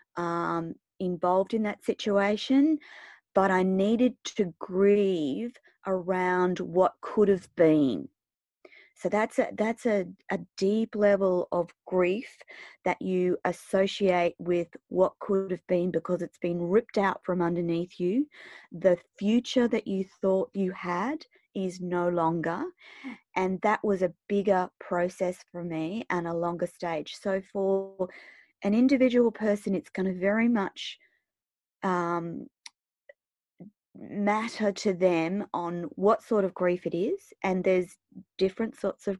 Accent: Australian